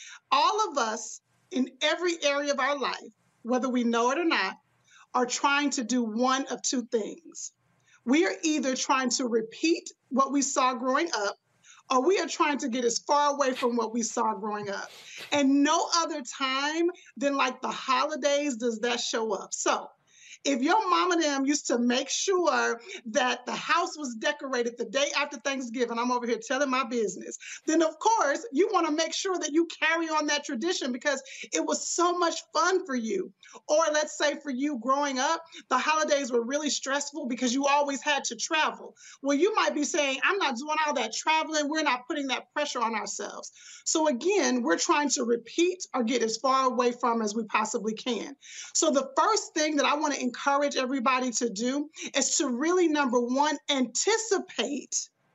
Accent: American